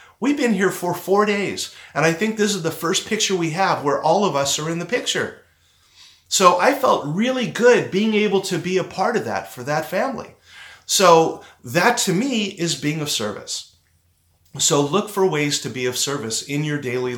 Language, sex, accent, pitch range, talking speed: English, male, American, 125-170 Hz, 205 wpm